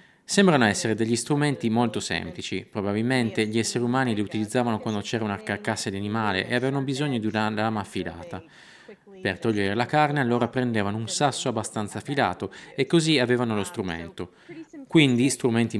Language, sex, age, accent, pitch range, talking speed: Italian, male, 20-39, native, 105-130 Hz, 160 wpm